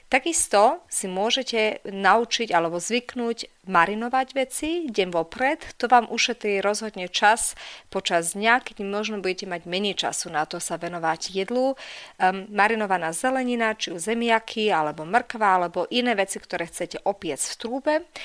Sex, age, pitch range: female, 30-49, 185-240 Hz